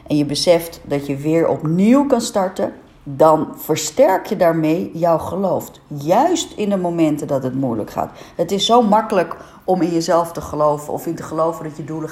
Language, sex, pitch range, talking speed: Dutch, female, 150-200 Hz, 195 wpm